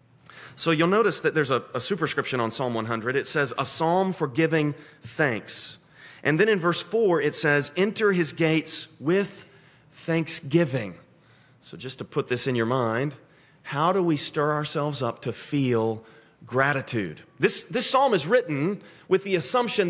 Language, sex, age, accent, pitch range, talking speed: English, male, 30-49, American, 130-170 Hz, 165 wpm